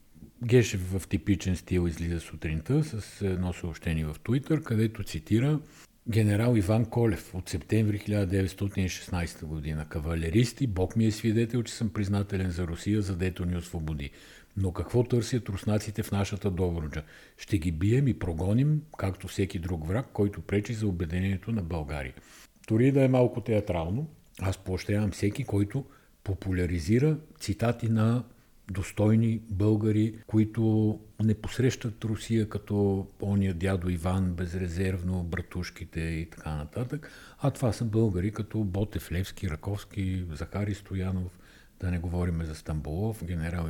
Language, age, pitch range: Bulgarian, 50-69, 85-110 Hz